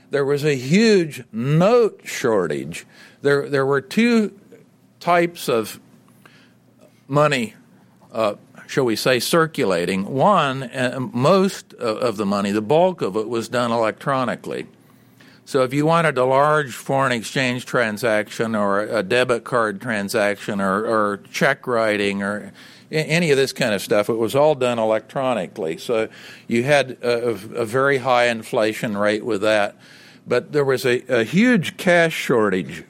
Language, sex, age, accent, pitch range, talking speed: English, male, 50-69, American, 115-155 Hz, 145 wpm